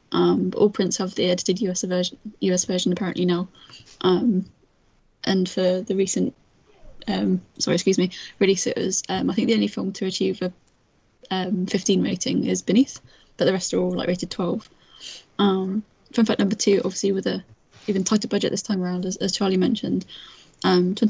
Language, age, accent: English, 10-29, British